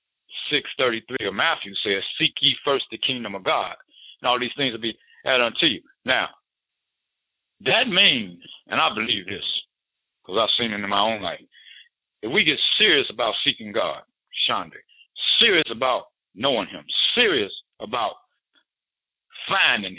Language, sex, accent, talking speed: English, male, American, 145 wpm